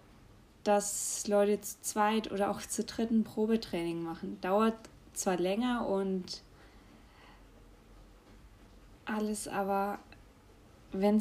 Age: 20-39